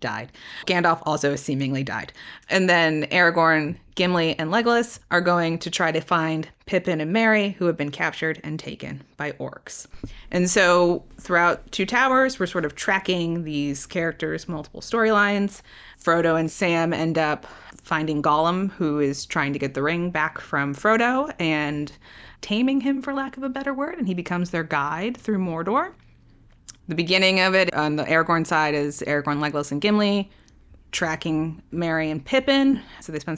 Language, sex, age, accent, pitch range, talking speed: English, female, 20-39, American, 150-185 Hz, 170 wpm